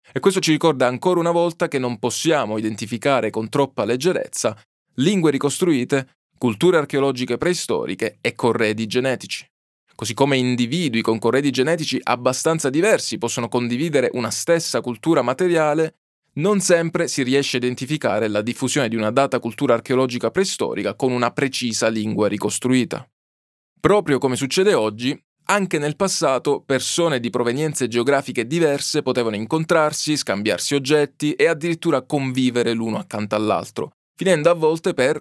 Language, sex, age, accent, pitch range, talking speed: Italian, male, 20-39, native, 120-160 Hz, 140 wpm